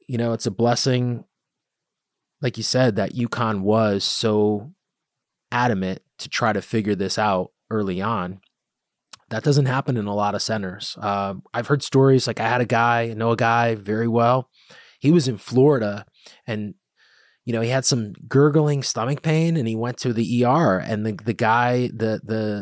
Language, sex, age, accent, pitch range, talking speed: English, male, 20-39, American, 105-130 Hz, 185 wpm